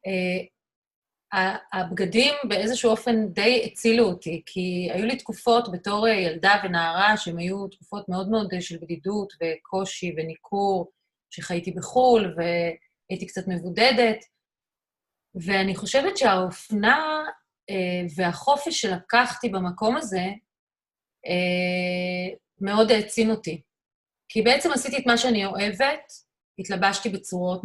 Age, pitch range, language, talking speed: 30-49, 180-235 Hz, Hebrew, 110 wpm